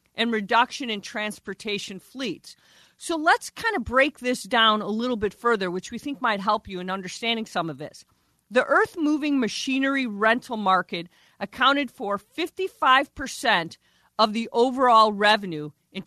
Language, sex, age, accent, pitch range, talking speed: English, female, 40-59, American, 220-300 Hz, 150 wpm